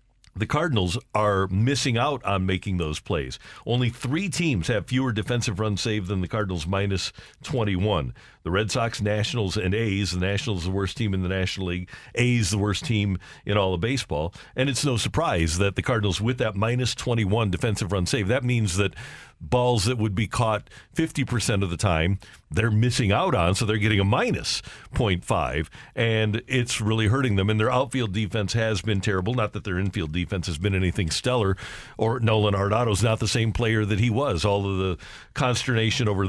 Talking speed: 195 wpm